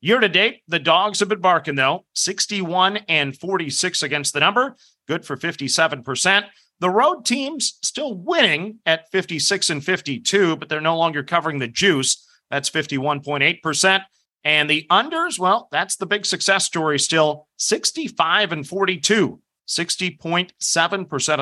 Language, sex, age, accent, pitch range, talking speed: English, male, 40-59, American, 150-205 Hz, 135 wpm